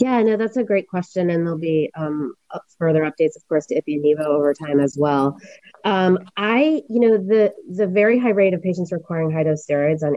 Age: 20-39